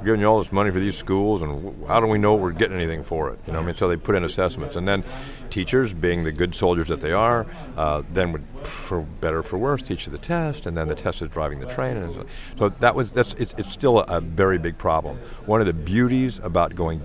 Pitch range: 85-115 Hz